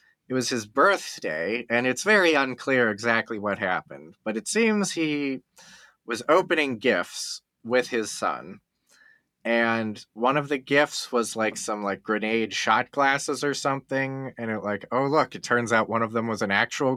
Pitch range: 105-140 Hz